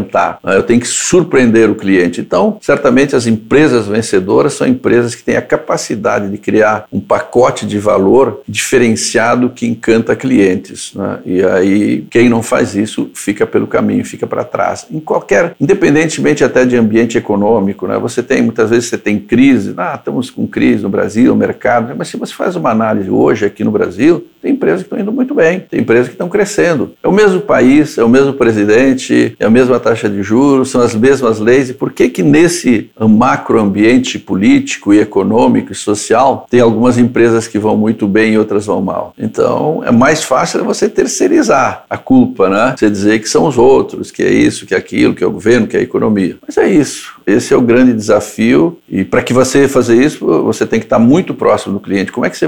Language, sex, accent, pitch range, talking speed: Portuguese, male, Brazilian, 110-135 Hz, 210 wpm